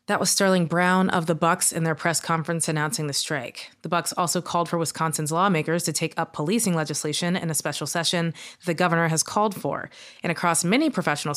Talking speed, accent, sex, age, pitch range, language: 205 wpm, American, female, 20-39, 160-180 Hz, English